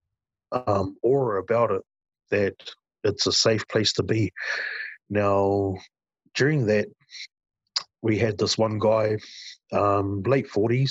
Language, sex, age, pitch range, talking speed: English, male, 30-49, 100-115 Hz, 115 wpm